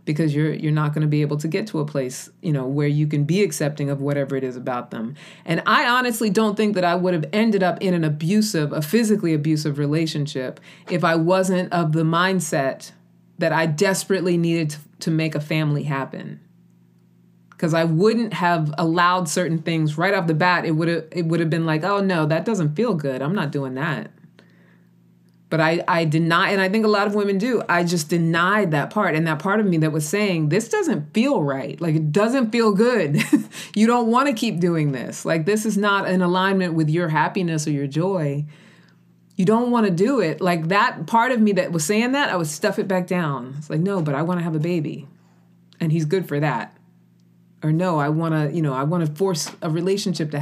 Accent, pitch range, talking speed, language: American, 150-190 Hz, 230 wpm, English